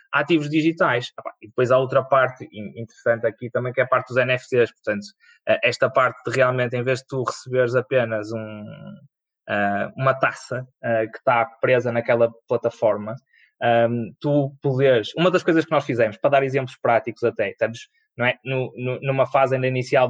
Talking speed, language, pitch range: 155 wpm, Portuguese, 120-155 Hz